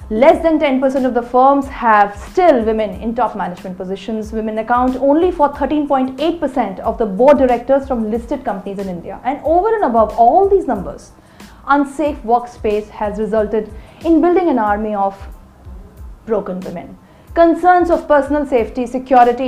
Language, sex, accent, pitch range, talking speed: English, female, Indian, 220-300 Hz, 155 wpm